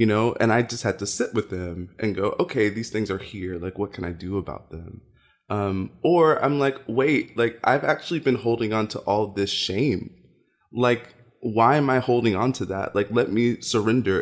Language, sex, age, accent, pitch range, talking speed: English, male, 20-39, American, 95-120 Hz, 215 wpm